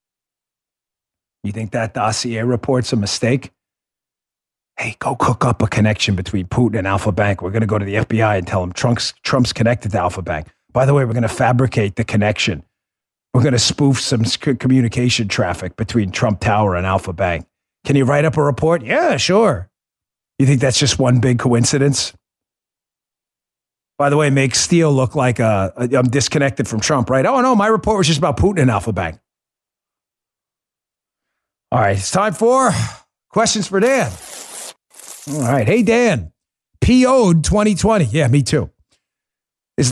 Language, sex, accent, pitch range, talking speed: English, male, American, 110-150 Hz, 175 wpm